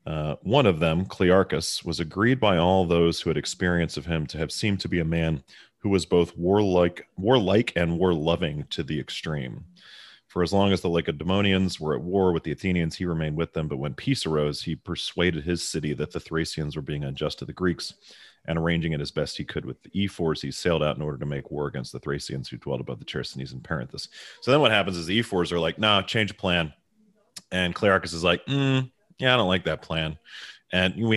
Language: English